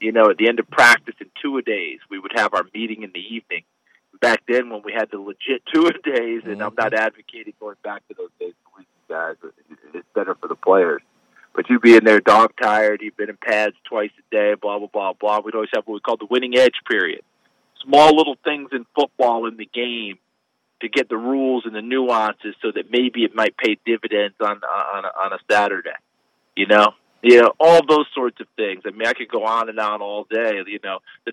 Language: English